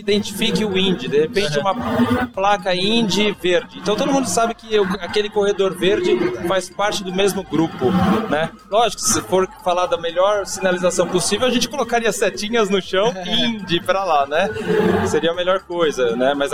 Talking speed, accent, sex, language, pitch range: 175 wpm, Brazilian, male, Portuguese, 185-225 Hz